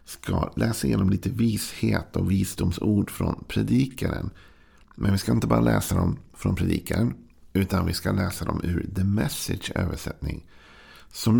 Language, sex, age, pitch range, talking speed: Swedish, male, 50-69, 80-95 Hz, 145 wpm